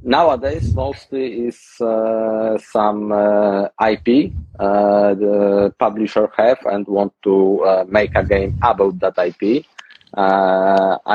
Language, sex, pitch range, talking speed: German, male, 95-120 Hz, 120 wpm